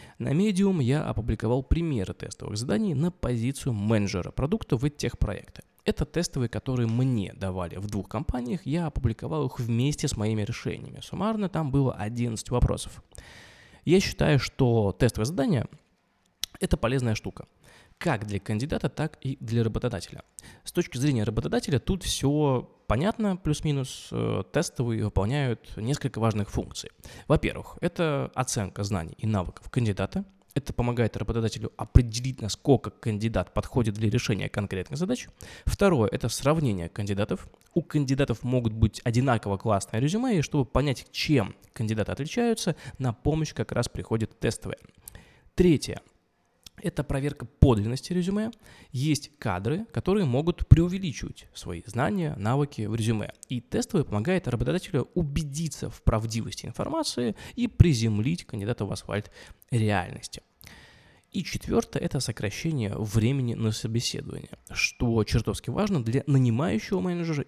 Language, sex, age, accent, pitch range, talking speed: Russian, male, 20-39, native, 110-150 Hz, 130 wpm